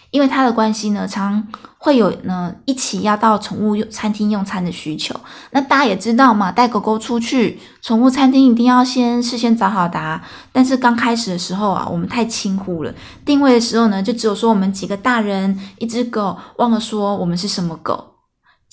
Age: 20-39